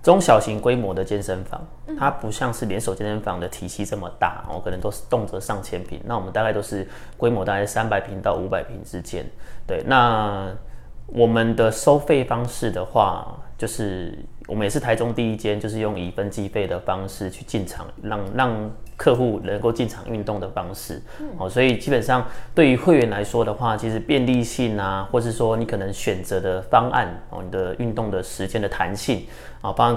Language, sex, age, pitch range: Chinese, male, 20-39, 95-120 Hz